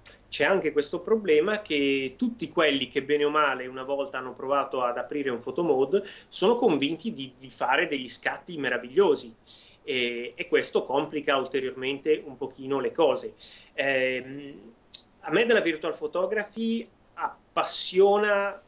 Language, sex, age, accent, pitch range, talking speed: Italian, male, 30-49, native, 135-200 Hz, 140 wpm